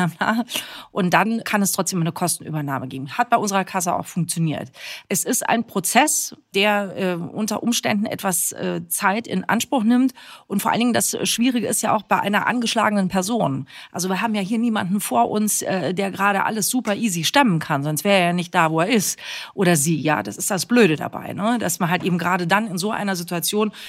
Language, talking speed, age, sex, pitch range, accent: German, 215 wpm, 40-59, female, 180-220 Hz, German